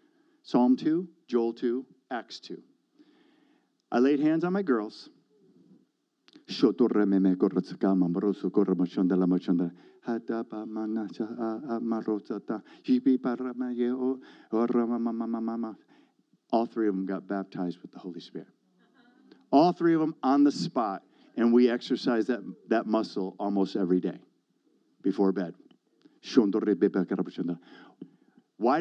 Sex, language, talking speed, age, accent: male, English, 85 wpm, 50-69, American